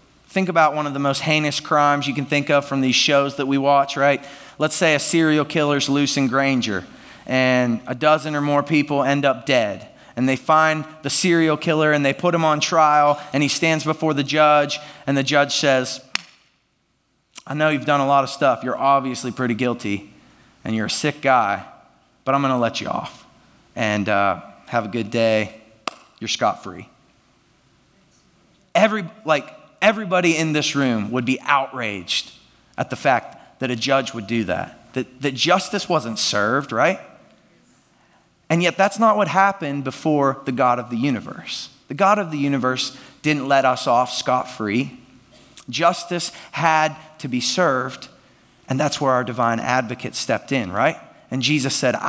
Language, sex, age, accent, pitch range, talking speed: English, male, 30-49, American, 130-155 Hz, 175 wpm